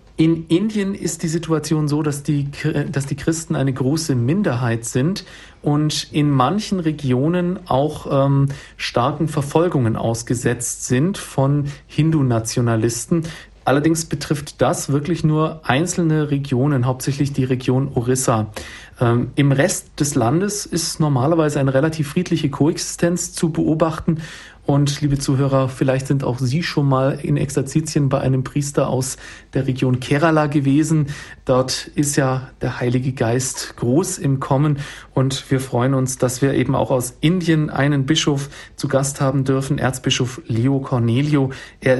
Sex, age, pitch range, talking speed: male, 40-59, 130-155 Hz, 140 wpm